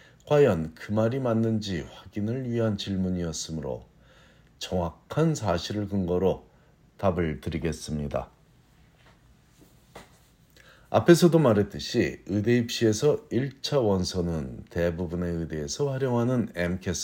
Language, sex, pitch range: Korean, male, 90-125 Hz